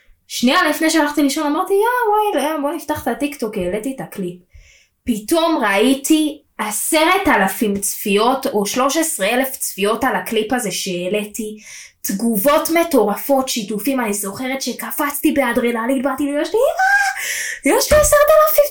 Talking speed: 150 wpm